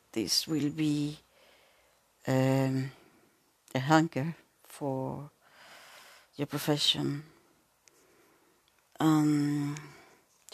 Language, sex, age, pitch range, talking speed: English, female, 60-79, 135-160 Hz, 65 wpm